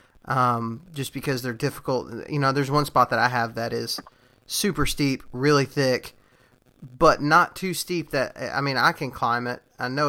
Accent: American